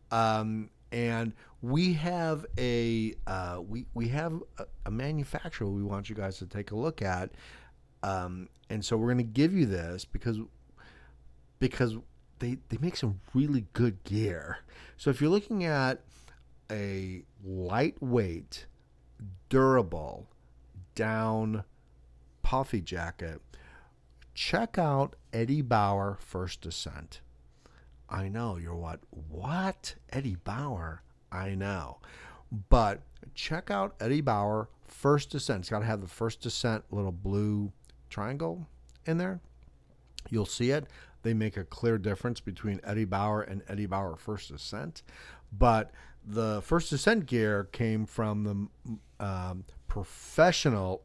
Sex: male